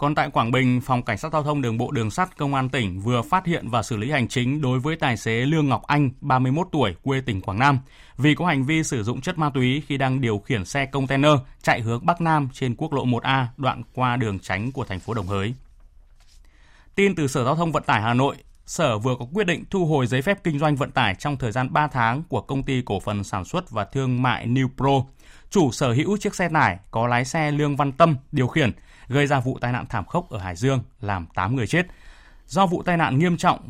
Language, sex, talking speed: Vietnamese, male, 255 wpm